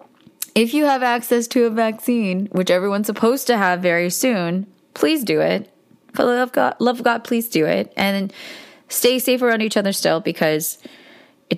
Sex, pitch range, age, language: female, 165-205 Hz, 20-39, English